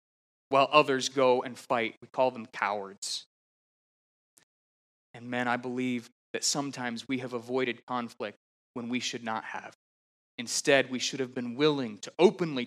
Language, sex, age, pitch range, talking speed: English, male, 20-39, 125-160 Hz, 150 wpm